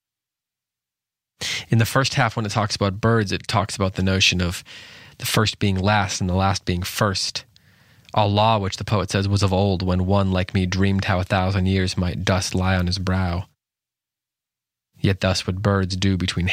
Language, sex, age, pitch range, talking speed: English, male, 20-39, 95-105 Hz, 190 wpm